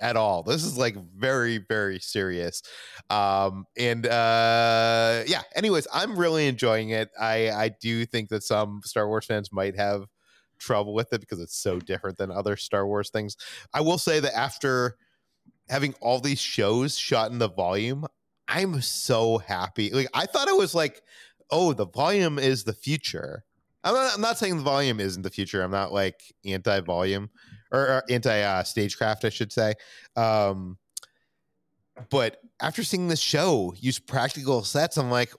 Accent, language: American, English